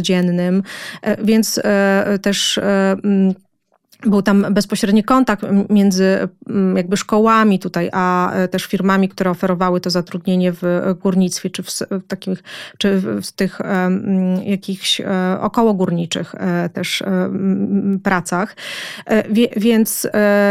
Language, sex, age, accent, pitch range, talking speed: Polish, female, 20-39, native, 185-210 Hz, 95 wpm